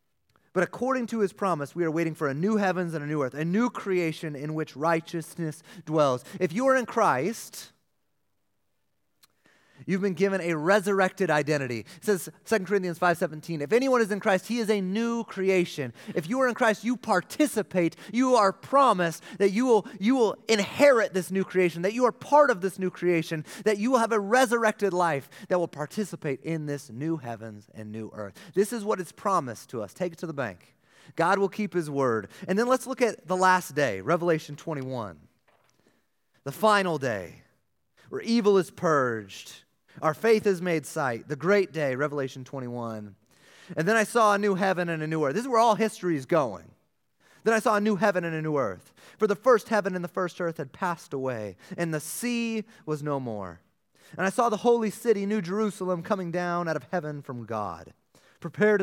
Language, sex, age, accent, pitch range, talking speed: English, male, 30-49, American, 150-210 Hz, 205 wpm